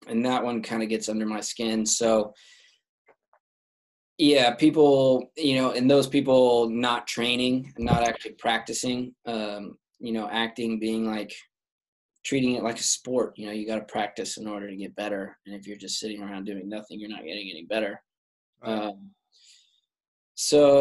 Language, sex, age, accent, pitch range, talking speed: English, male, 20-39, American, 105-125 Hz, 170 wpm